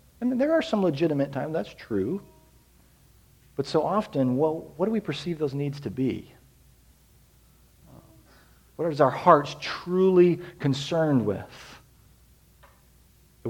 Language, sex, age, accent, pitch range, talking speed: English, male, 40-59, American, 115-155 Hz, 125 wpm